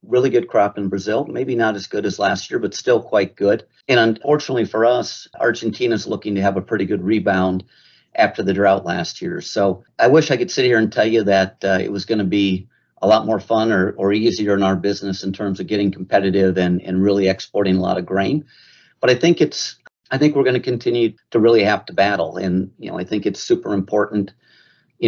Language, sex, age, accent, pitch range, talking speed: English, male, 50-69, American, 95-110 Hz, 235 wpm